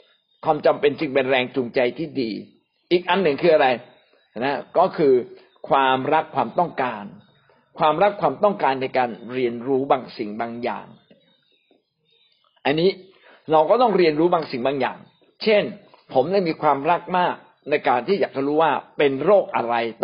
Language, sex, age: Thai, male, 60-79